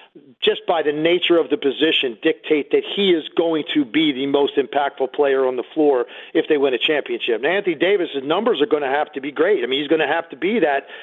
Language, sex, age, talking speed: English, male, 40-59, 250 wpm